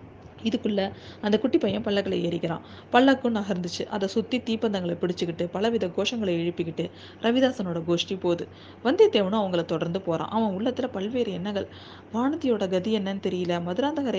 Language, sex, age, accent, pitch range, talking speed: Tamil, female, 20-39, native, 175-225 Hz, 130 wpm